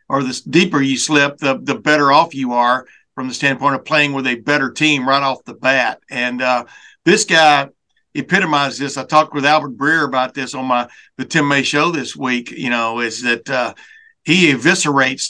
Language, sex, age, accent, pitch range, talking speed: English, male, 60-79, American, 130-155 Hz, 205 wpm